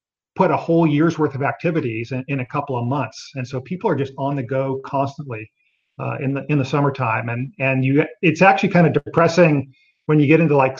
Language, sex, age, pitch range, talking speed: English, male, 40-59, 130-155 Hz, 230 wpm